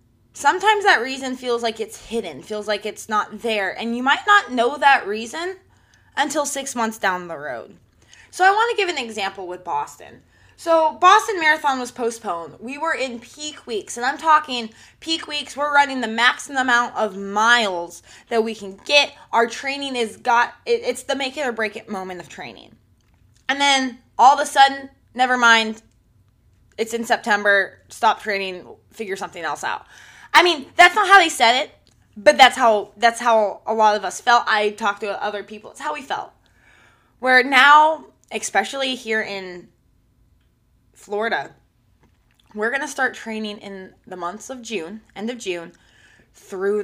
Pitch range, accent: 205-280 Hz, American